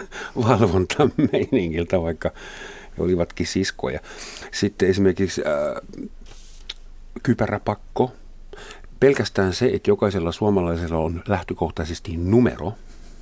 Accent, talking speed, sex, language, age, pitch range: native, 75 wpm, male, Finnish, 50-69, 85-105 Hz